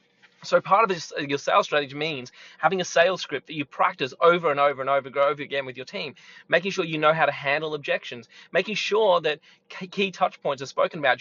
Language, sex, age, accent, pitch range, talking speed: English, male, 20-39, Australian, 145-175 Hz, 220 wpm